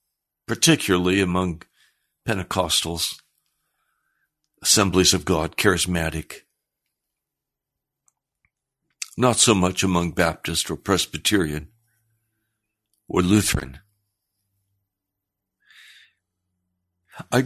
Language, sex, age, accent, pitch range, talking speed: English, male, 60-79, American, 90-110 Hz, 60 wpm